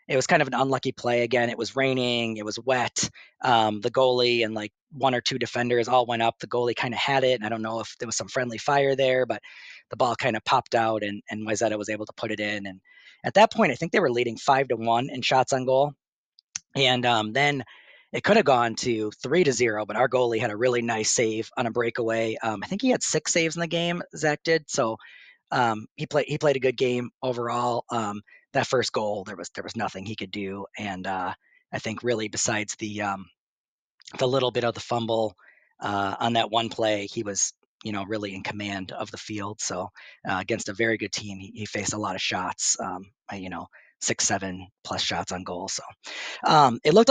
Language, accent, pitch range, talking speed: English, American, 110-135 Hz, 240 wpm